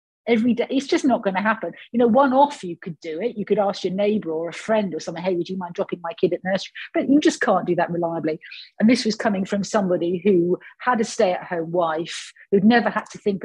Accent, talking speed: British, 270 wpm